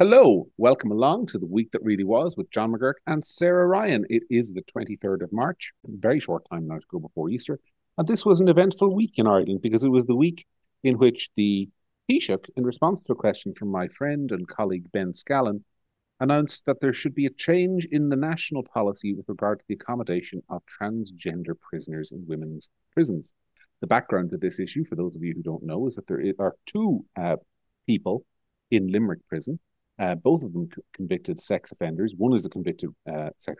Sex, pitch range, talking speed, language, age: male, 90-145 Hz, 205 wpm, English, 40-59